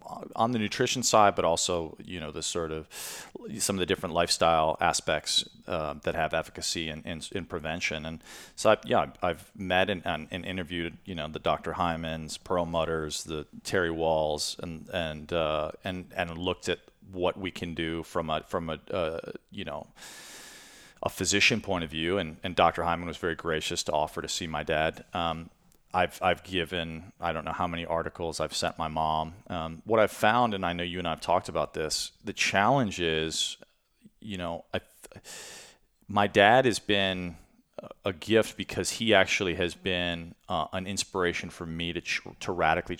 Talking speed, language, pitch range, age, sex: 190 wpm, English, 80-95 Hz, 40-59, male